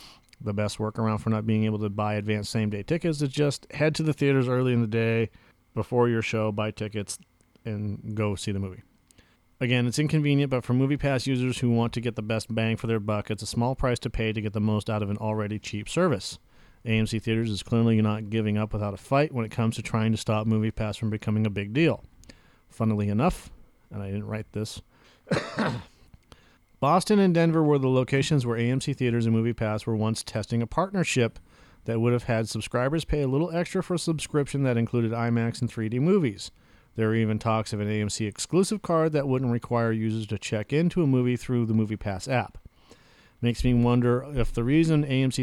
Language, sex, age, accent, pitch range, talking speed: English, male, 40-59, American, 110-125 Hz, 210 wpm